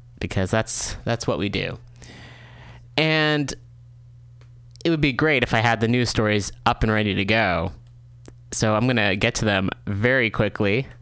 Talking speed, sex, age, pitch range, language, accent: 170 wpm, male, 20-39, 105-135 Hz, English, American